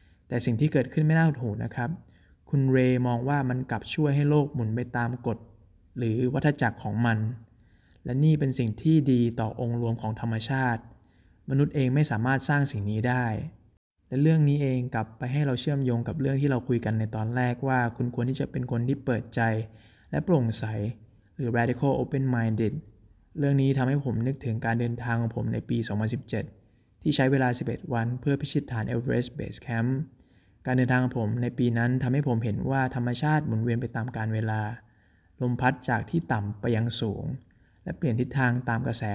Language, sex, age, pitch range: Thai, male, 20-39, 110-130 Hz